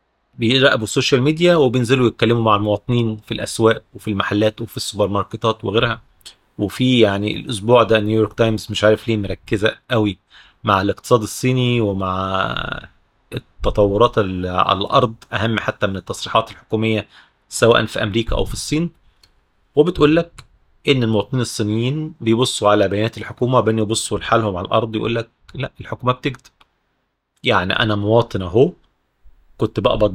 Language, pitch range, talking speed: Arabic, 105-120 Hz, 135 wpm